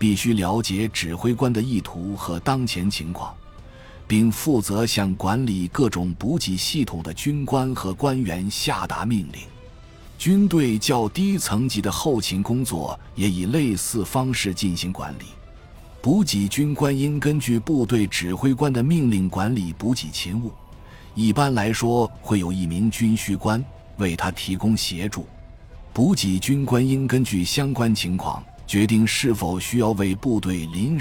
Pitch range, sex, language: 95-125 Hz, male, Chinese